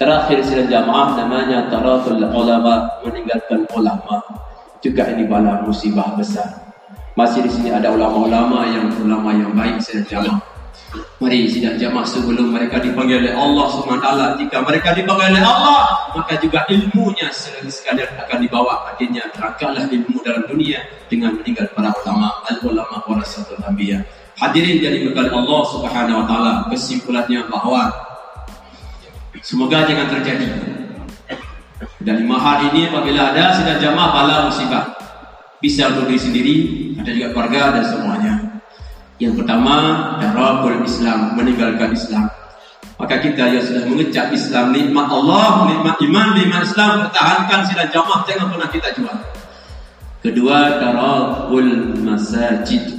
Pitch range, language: 115-175 Hz, Indonesian